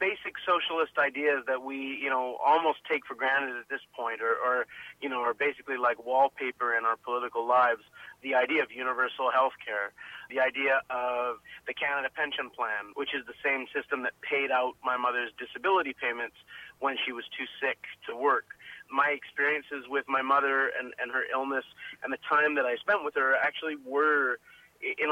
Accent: American